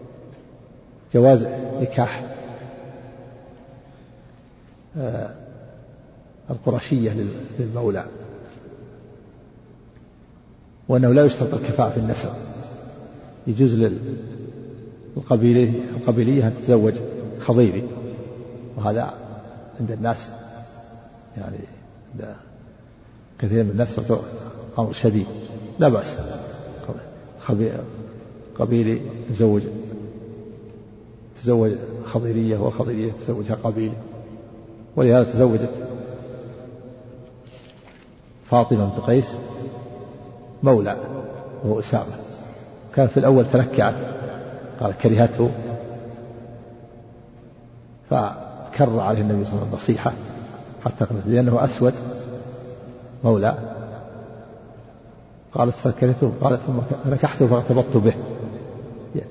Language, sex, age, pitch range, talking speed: Arabic, male, 50-69, 115-125 Hz, 70 wpm